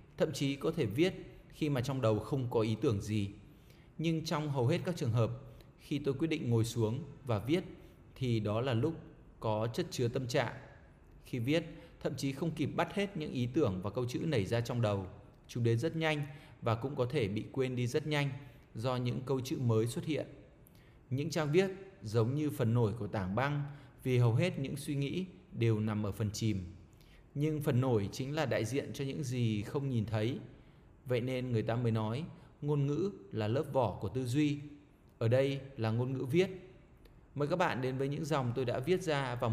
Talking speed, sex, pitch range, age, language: 215 wpm, male, 115-155 Hz, 20-39, Vietnamese